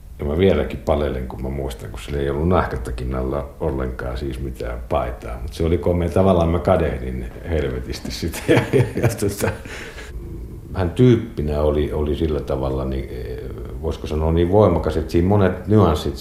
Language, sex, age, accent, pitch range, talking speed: Finnish, male, 60-79, native, 70-95 Hz, 170 wpm